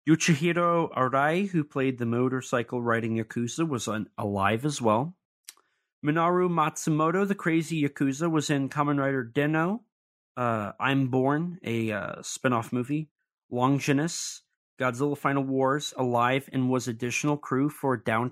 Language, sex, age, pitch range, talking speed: English, male, 30-49, 125-150 Hz, 140 wpm